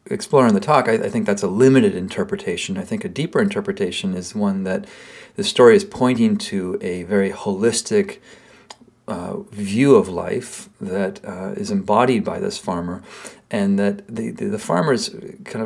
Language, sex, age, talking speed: English, male, 40-59, 170 wpm